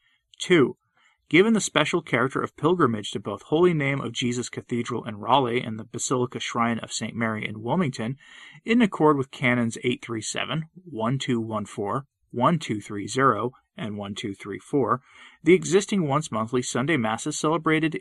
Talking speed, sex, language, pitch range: 135 wpm, male, English, 115-160 Hz